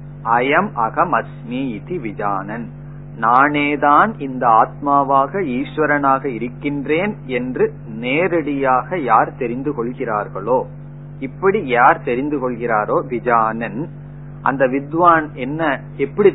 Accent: native